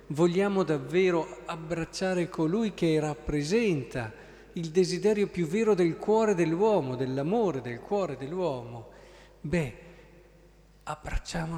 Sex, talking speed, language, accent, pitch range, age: male, 100 wpm, Italian, native, 140-180 Hz, 50-69